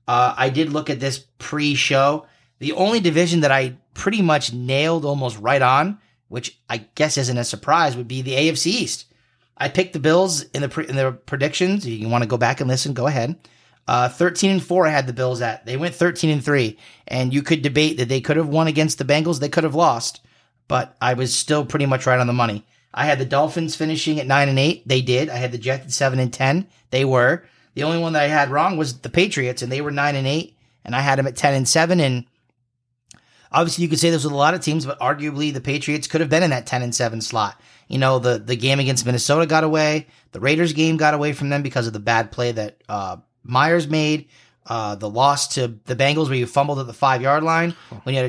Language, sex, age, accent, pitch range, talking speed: English, male, 30-49, American, 125-160 Hz, 245 wpm